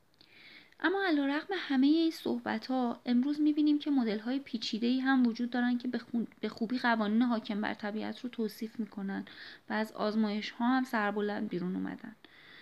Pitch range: 190-245 Hz